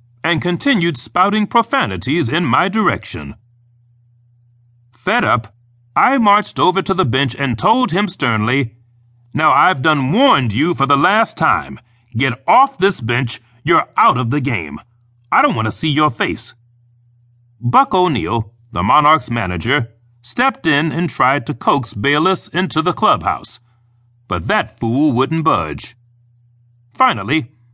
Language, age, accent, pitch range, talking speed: English, 40-59, American, 120-160 Hz, 140 wpm